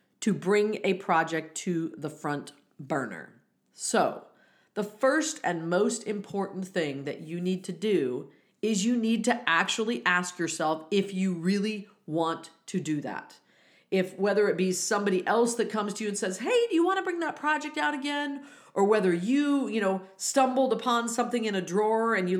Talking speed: 185 wpm